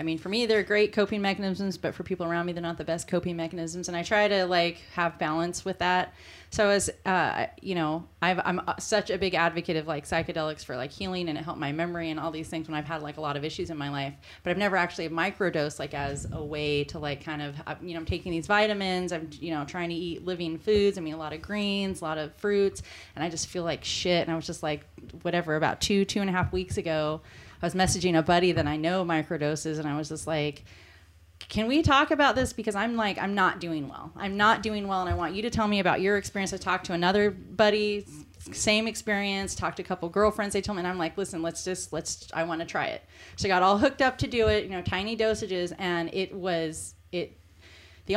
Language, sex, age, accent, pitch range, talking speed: English, female, 30-49, American, 160-205 Hz, 260 wpm